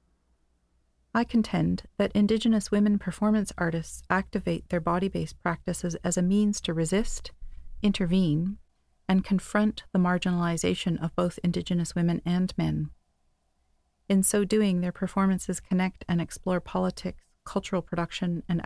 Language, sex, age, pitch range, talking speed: English, female, 40-59, 165-195 Hz, 125 wpm